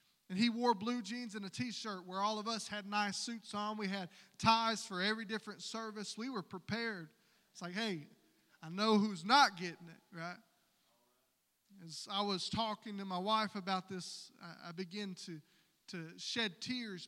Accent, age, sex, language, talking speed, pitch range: American, 20-39, male, English, 180 wpm, 190-235 Hz